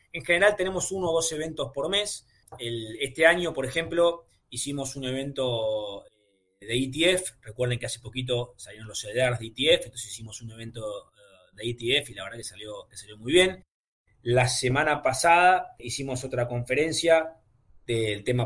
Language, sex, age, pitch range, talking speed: Spanish, male, 20-39, 120-155 Hz, 165 wpm